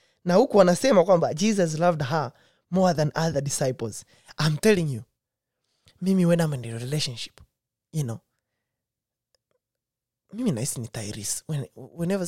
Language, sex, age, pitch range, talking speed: Swahili, male, 20-39, 125-175 Hz, 140 wpm